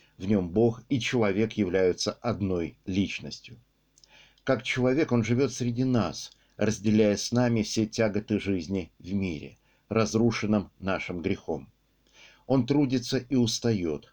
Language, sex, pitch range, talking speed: Russian, male, 100-120 Hz, 125 wpm